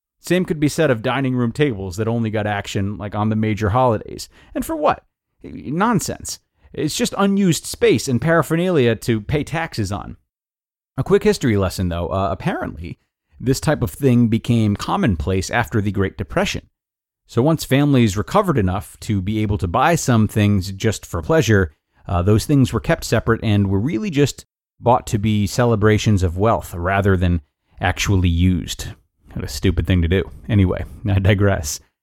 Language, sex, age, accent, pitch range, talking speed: English, male, 30-49, American, 95-130 Hz, 170 wpm